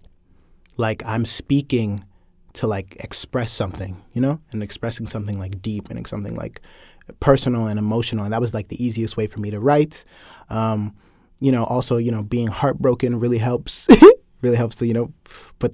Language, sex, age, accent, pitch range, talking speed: English, male, 20-39, American, 105-125 Hz, 180 wpm